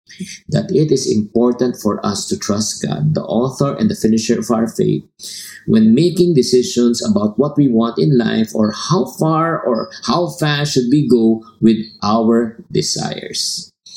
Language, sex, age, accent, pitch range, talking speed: English, male, 50-69, Filipino, 110-160 Hz, 165 wpm